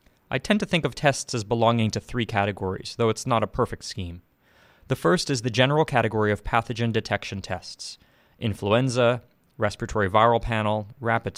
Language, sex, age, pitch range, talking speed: English, male, 30-49, 100-120 Hz, 165 wpm